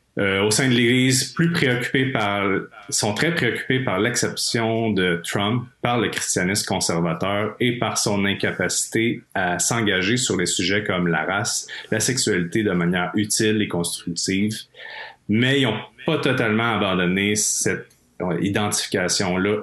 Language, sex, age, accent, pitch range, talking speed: French, male, 30-49, Canadian, 90-115 Hz, 140 wpm